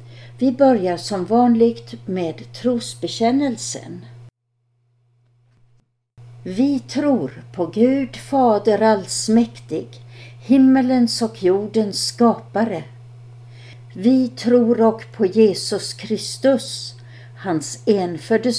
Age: 60-79